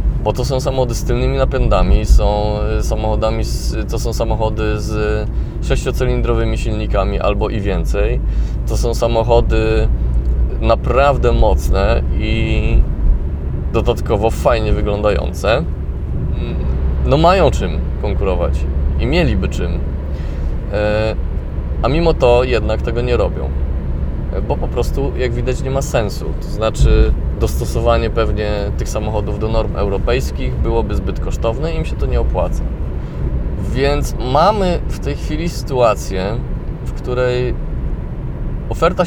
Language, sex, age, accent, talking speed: Polish, male, 20-39, native, 115 wpm